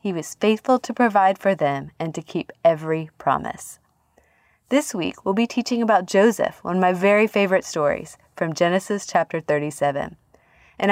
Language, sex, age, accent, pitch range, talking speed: English, female, 20-39, American, 170-230 Hz, 165 wpm